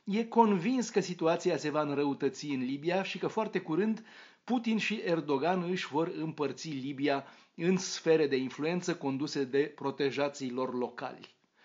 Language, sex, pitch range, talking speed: Romanian, male, 135-185 Hz, 150 wpm